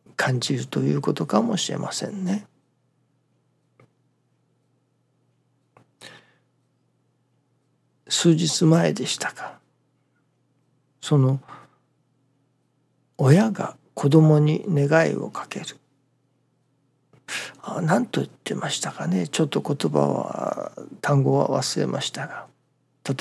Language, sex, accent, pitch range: Japanese, male, native, 130-150 Hz